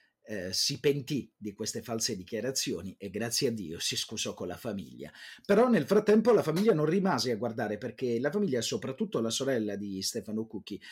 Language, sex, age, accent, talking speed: Italian, male, 40-59, native, 185 wpm